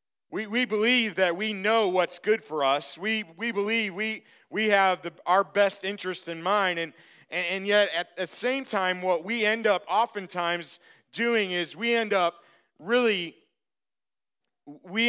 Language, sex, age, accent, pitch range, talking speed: English, male, 40-59, American, 175-215 Hz, 165 wpm